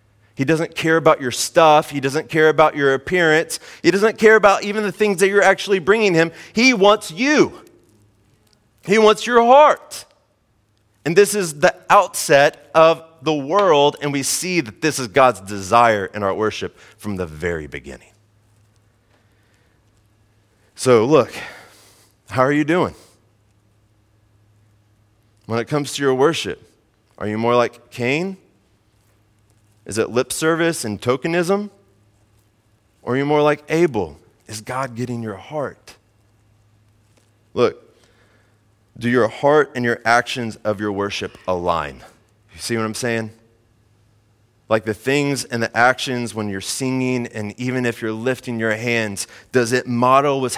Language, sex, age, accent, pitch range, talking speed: English, male, 30-49, American, 105-150 Hz, 145 wpm